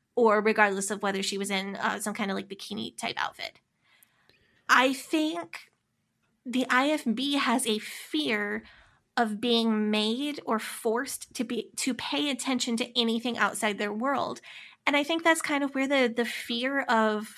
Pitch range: 215-255 Hz